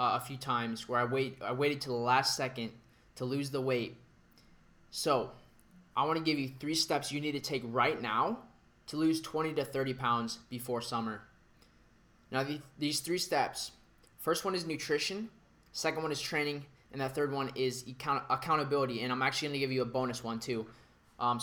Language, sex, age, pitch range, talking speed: English, male, 20-39, 125-150 Hz, 195 wpm